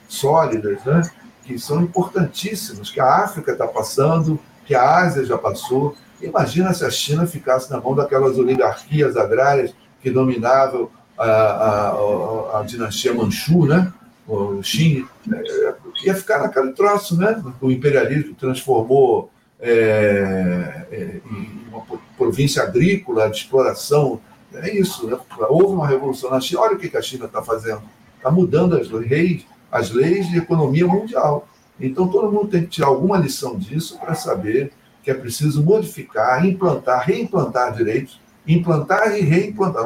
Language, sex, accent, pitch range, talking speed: Portuguese, male, Brazilian, 130-185 Hz, 150 wpm